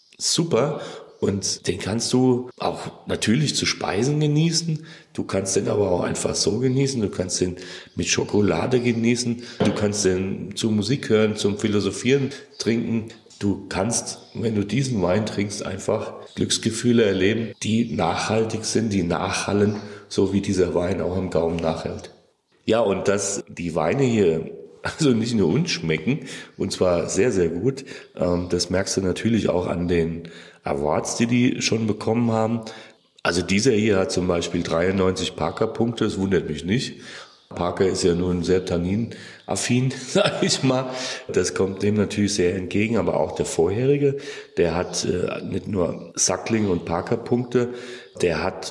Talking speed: 155 wpm